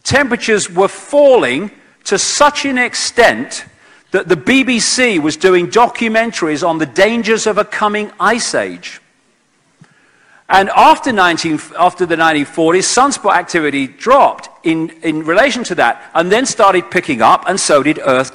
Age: 40-59